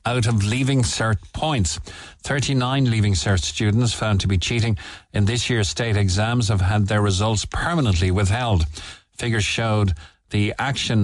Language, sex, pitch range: English, male, 95-120 Hz